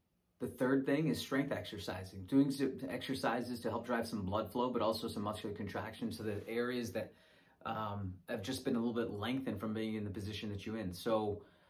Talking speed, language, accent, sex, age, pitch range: 215 wpm, English, American, male, 30-49, 100-120 Hz